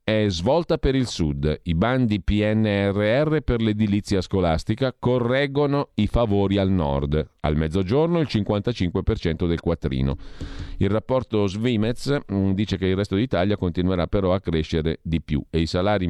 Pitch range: 85-110 Hz